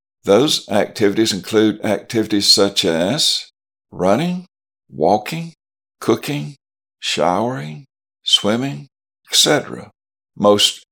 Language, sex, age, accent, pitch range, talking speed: English, male, 60-79, American, 95-135 Hz, 70 wpm